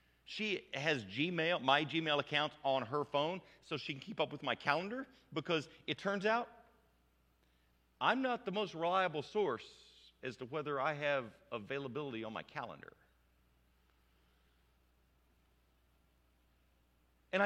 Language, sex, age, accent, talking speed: English, male, 50-69, American, 125 wpm